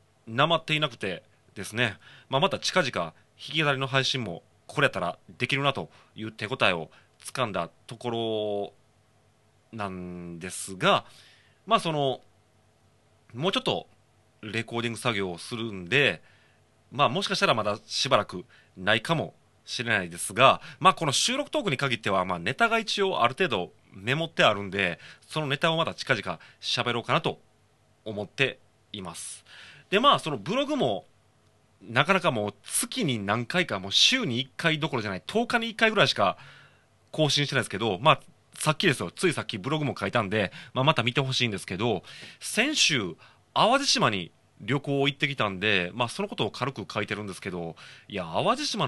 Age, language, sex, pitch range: 30-49, Japanese, male, 105-155 Hz